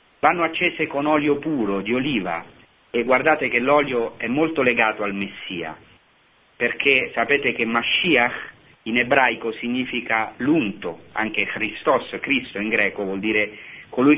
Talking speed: 135 wpm